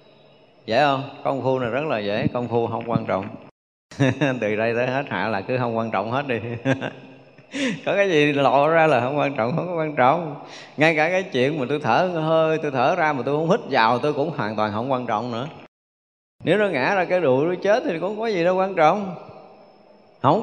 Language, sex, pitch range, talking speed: Vietnamese, male, 110-155 Hz, 235 wpm